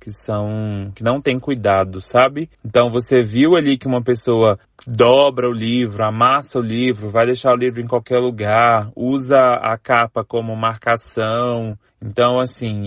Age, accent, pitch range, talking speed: 20-39, Brazilian, 110-125 Hz, 160 wpm